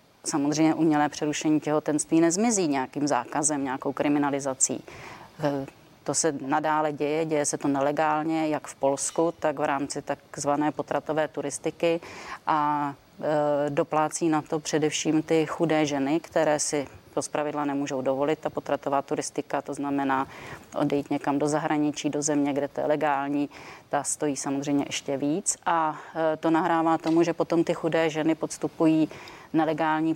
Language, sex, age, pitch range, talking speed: Czech, female, 30-49, 145-160 Hz, 140 wpm